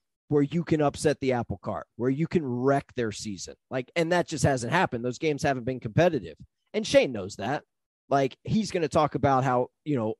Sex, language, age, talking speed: male, English, 30-49, 220 wpm